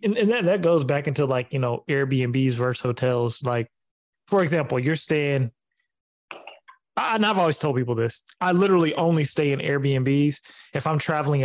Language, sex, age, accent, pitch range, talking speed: English, male, 20-39, American, 130-160 Hz, 160 wpm